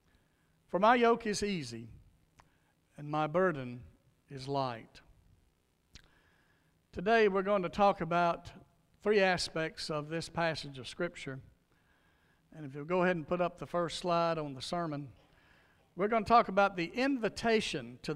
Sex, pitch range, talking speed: male, 150-205 Hz, 150 wpm